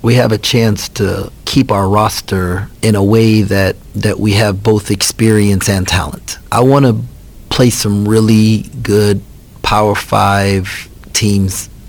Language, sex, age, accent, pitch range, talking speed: English, male, 40-59, American, 95-110 Hz, 145 wpm